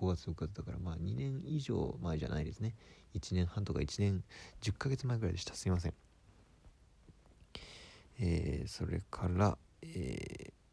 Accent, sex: native, male